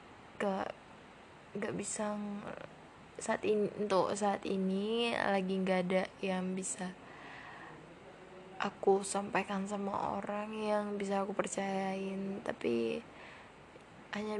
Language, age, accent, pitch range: Indonesian, 10-29, native, 190-210 Hz